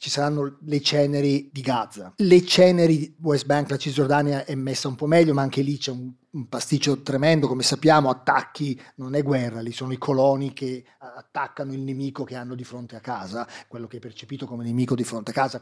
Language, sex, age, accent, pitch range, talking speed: Italian, male, 30-49, native, 130-170 Hz, 215 wpm